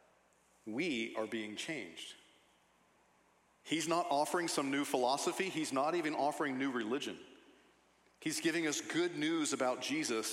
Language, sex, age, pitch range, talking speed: English, male, 40-59, 135-185 Hz, 135 wpm